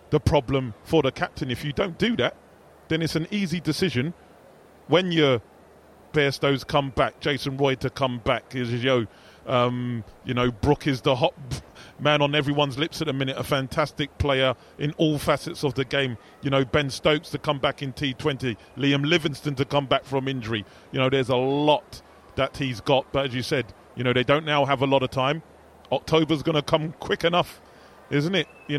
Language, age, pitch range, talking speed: English, 30-49, 135-160 Hz, 205 wpm